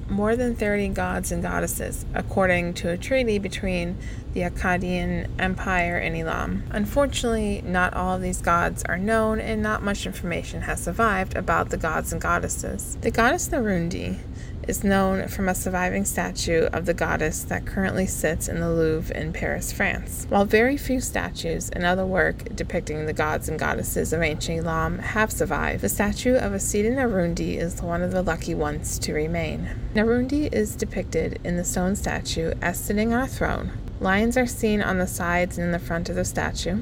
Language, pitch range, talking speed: English, 170-225 Hz, 180 wpm